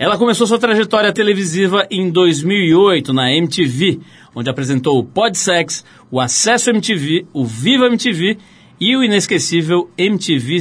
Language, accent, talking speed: Portuguese, Brazilian, 130 wpm